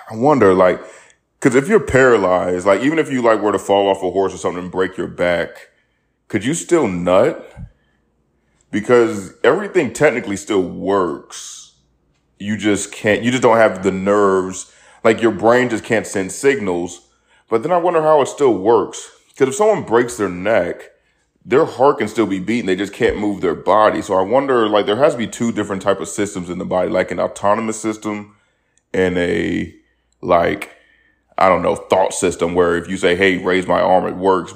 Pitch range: 90-110 Hz